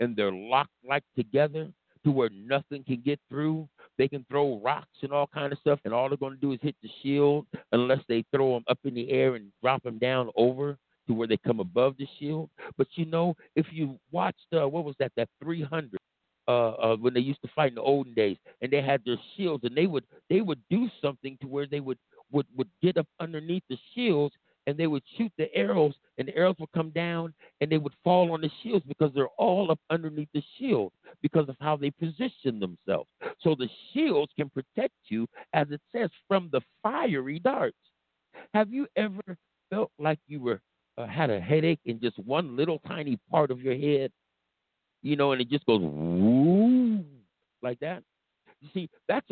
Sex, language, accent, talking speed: male, English, American, 210 wpm